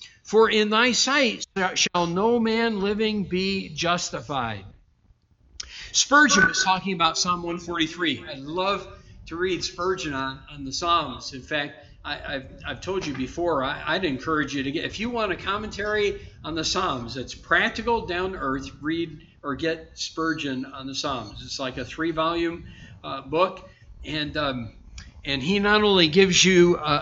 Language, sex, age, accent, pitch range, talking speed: English, male, 50-69, American, 140-200 Hz, 165 wpm